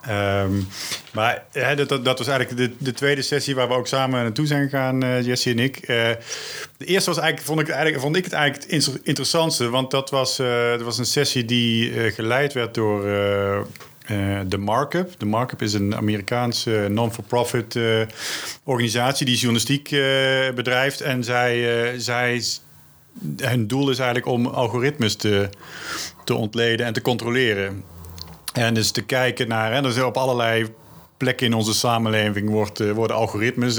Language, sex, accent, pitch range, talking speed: Dutch, male, Dutch, 110-130 Hz, 170 wpm